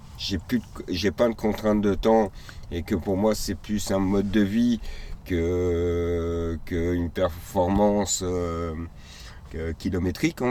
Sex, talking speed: male, 150 wpm